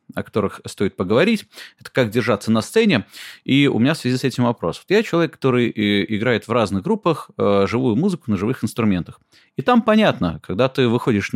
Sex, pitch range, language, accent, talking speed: male, 105-140 Hz, Russian, native, 190 wpm